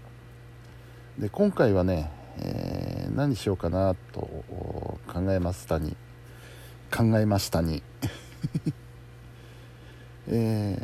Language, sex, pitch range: Japanese, male, 95-120 Hz